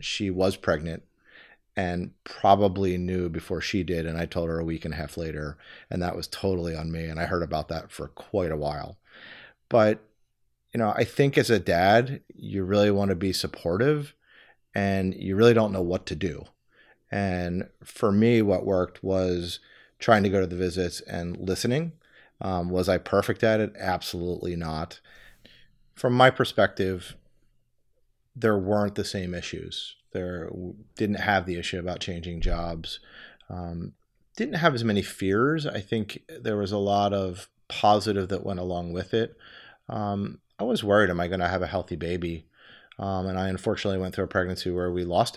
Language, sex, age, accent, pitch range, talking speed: English, male, 30-49, American, 85-100 Hz, 180 wpm